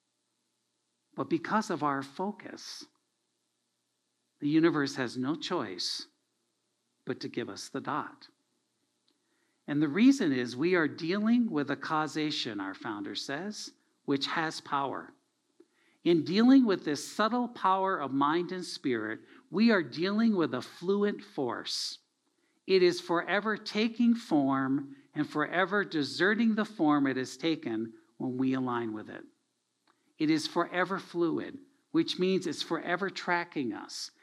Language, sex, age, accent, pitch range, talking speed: English, male, 60-79, American, 155-255 Hz, 135 wpm